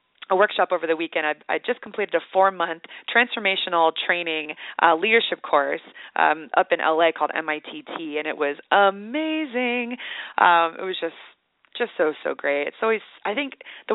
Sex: female